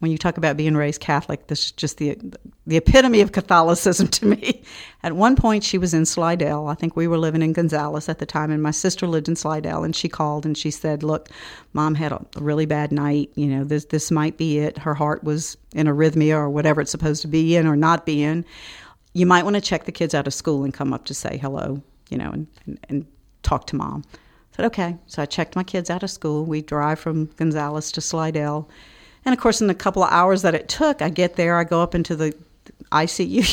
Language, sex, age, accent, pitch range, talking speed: English, female, 50-69, American, 155-180 Hz, 245 wpm